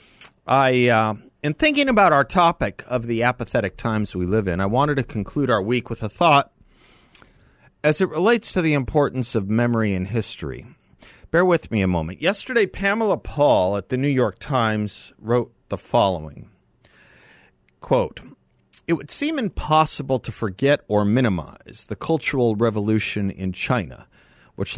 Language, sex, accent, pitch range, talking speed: English, male, American, 110-145 Hz, 155 wpm